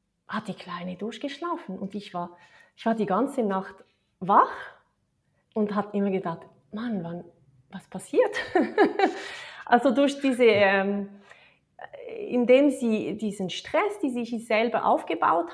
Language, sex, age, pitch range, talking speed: German, female, 30-49, 195-255 Hz, 130 wpm